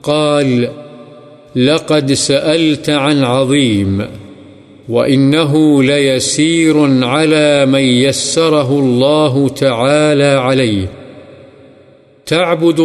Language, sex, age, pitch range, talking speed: Urdu, male, 50-69, 130-150 Hz, 65 wpm